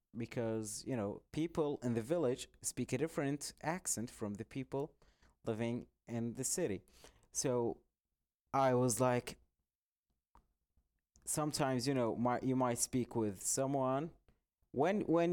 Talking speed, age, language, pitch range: 125 wpm, 30-49, English, 105-150 Hz